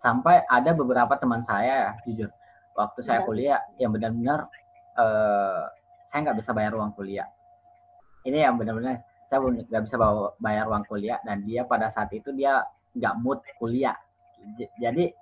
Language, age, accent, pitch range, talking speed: Indonesian, 20-39, native, 110-175 Hz, 145 wpm